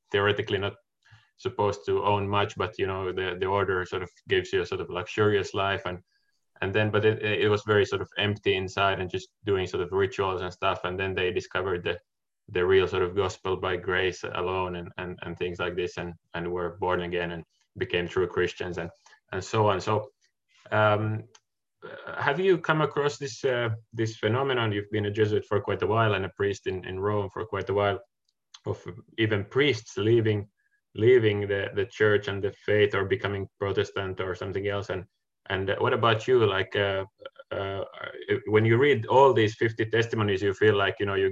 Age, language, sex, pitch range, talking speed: 20-39, Finnish, male, 95-135 Hz, 200 wpm